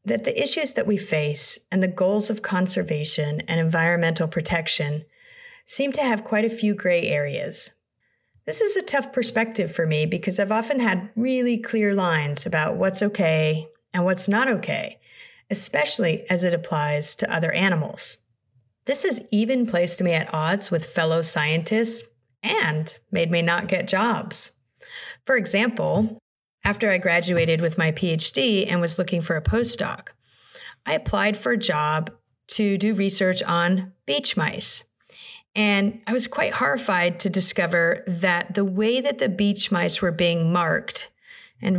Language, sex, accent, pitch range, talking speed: English, female, American, 165-210 Hz, 155 wpm